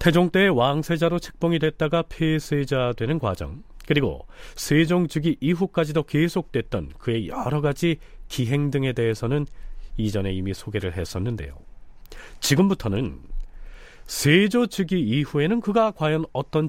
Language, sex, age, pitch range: Korean, male, 30-49, 105-160 Hz